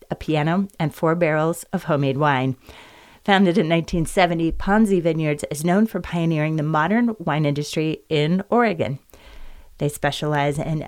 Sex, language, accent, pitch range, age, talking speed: female, English, American, 145-175 Hz, 30-49, 145 wpm